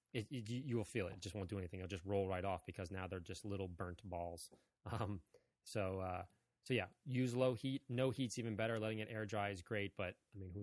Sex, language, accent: male, English, American